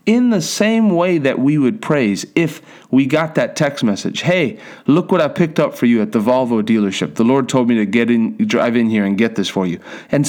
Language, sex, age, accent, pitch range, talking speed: English, male, 40-59, American, 115-150 Hz, 245 wpm